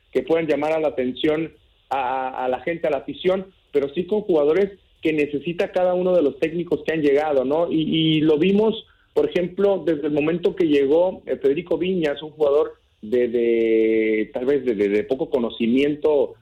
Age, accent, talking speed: 40-59, Mexican, 195 wpm